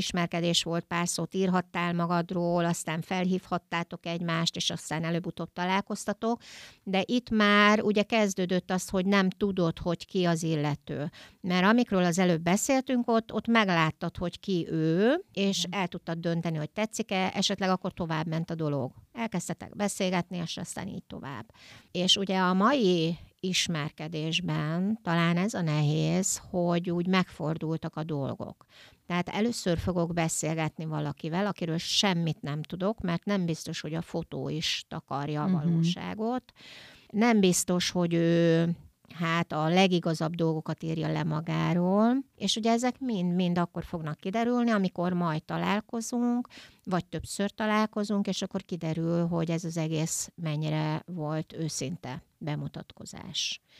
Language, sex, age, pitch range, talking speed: Hungarian, female, 60-79, 165-190 Hz, 135 wpm